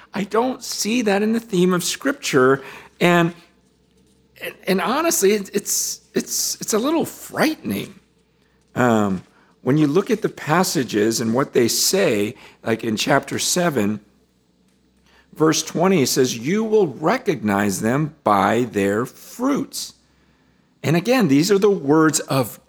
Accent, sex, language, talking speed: American, male, English, 130 wpm